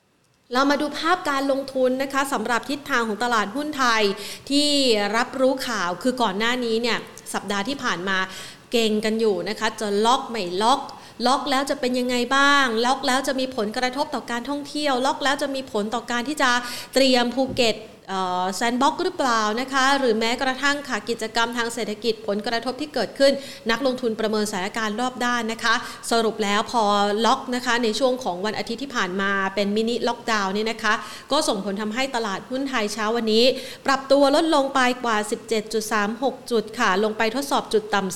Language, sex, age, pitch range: Thai, female, 30-49, 215-260 Hz